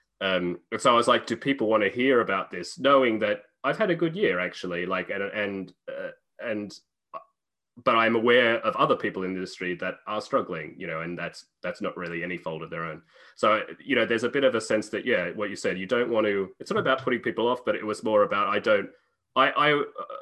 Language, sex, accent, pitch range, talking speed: English, male, Australian, 85-110 Hz, 240 wpm